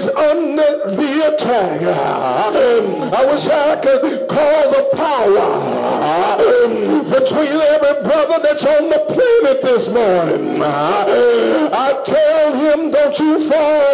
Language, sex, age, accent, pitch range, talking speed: English, male, 60-79, American, 285-320 Hz, 110 wpm